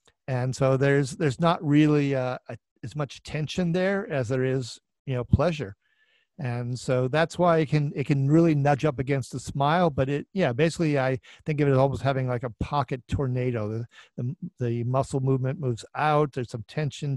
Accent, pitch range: American, 125-150 Hz